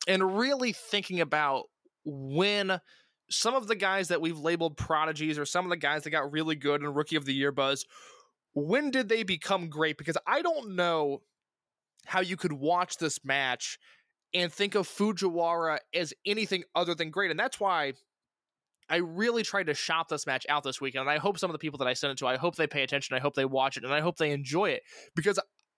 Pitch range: 145-185 Hz